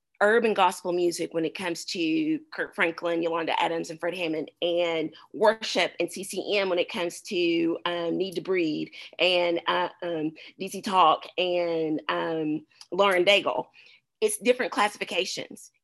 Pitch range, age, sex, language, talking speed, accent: 175-235 Hz, 30-49, female, English, 145 wpm, American